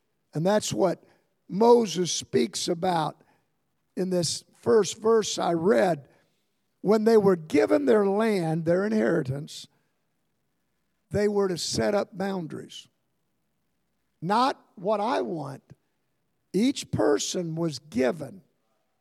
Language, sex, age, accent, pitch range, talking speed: English, male, 50-69, American, 155-215 Hz, 105 wpm